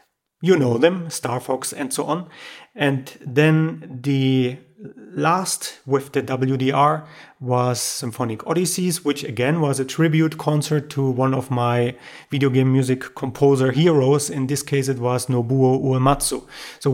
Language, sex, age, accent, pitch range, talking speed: English, male, 30-49, German, 125-145 Hz, 145 wpm